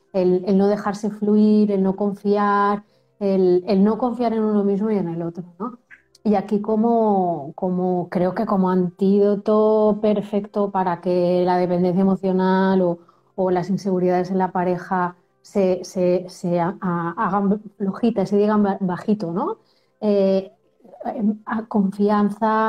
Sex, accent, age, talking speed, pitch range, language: female, Spanish, 30-49, 140 wpm, 185-215 Hz, Spanish